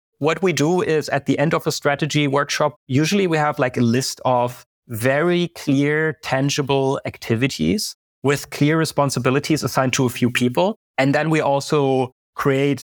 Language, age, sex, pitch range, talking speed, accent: French, 30-49, male, 125-155 Hz, 165 wpm, German